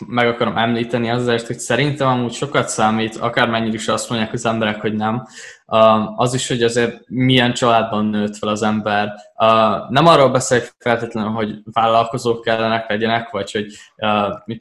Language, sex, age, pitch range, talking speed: Hungarian, male, 20-39, 110-130 Hz, 155 wpm